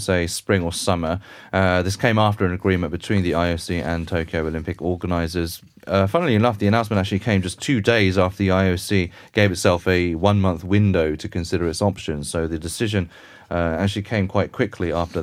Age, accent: 30-49, British